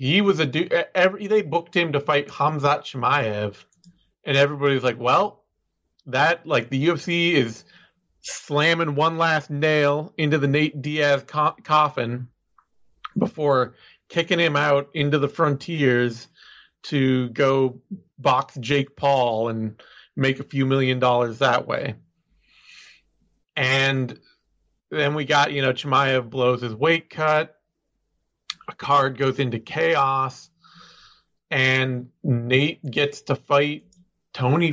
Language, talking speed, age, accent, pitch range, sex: English, 125 wpm, 40-59, American, 130-155 Hz, male